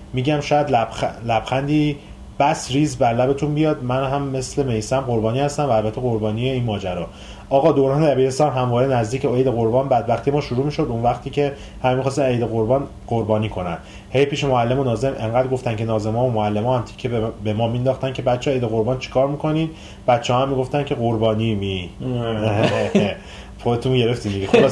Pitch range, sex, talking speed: 115-140 Hz, male, 185 wpm